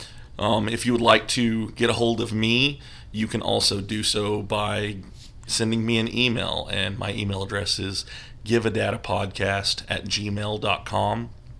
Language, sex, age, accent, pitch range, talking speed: English, male, 30-49, American, 100-115 Hz, 150 wpm